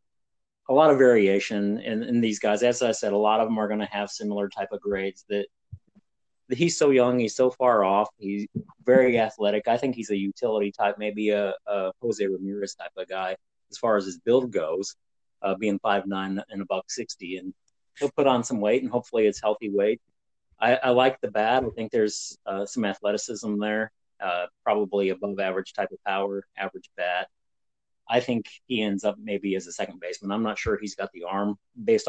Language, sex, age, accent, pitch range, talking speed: English, male, 30-49, American, 95-115 Hz, 210 wpm